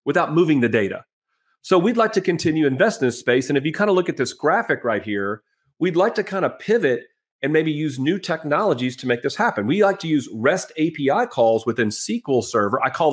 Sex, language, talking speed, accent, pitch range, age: male, English, 235 wpm, American, 120-175 Hz, 40-59